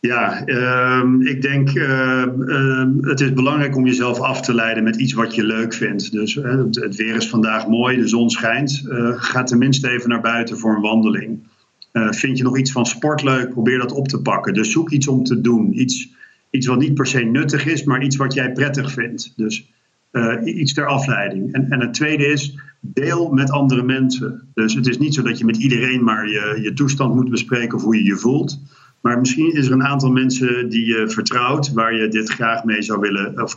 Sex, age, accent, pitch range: male, 50-69, Dutch, 115-135 Hz